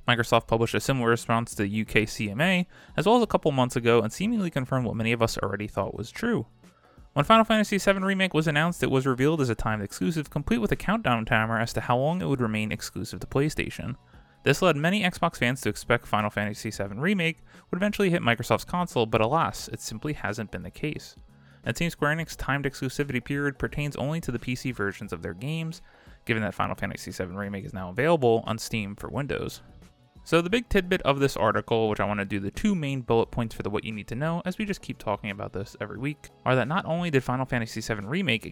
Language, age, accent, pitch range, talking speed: English, 20-39, American, 105-155 Hz, 235 wpm